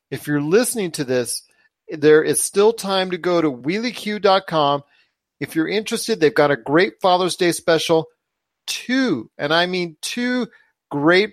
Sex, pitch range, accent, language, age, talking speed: male, 130-175 Hz, American, English, 40-59, 155 wpm